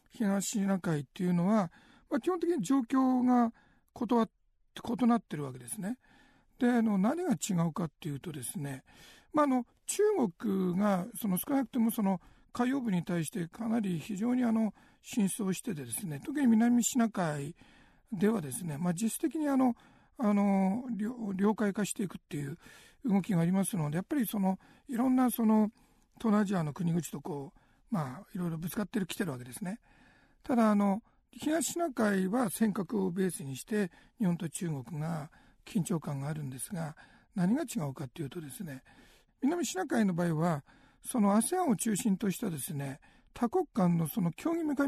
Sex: male